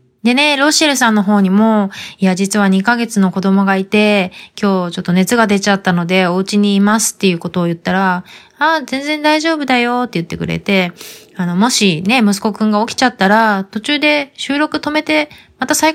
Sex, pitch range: female, 180-250 Hz